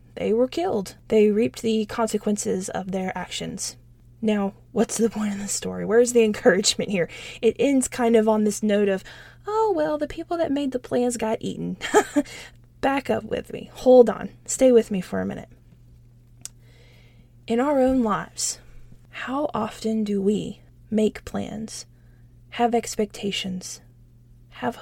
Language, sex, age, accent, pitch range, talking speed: English, female, 20-39, American, 170-235 Hz, 155 wpm